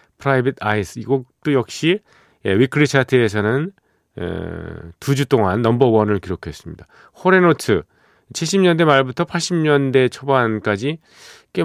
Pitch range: 95-135 Hz